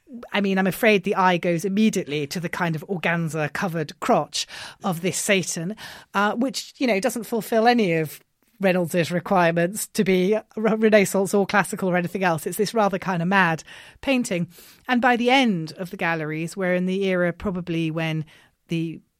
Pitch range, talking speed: 150-200 Hz, 180 wpm